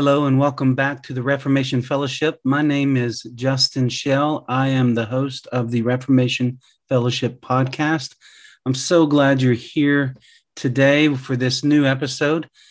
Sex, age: male, 40-59